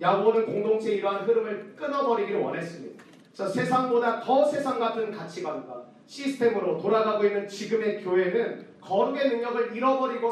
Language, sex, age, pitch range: Korean, male, 40-59, 195-255 Hz